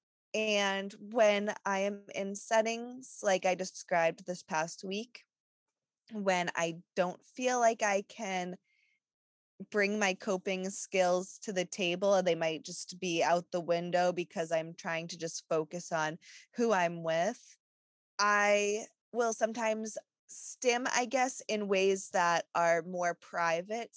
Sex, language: female, English